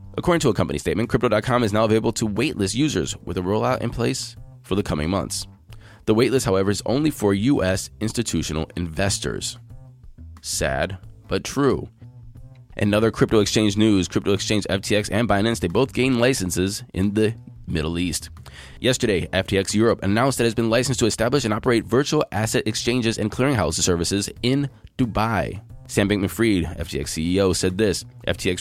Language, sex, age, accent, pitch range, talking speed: English, male, 20-39, American, 90-115 Hz, 165 wpm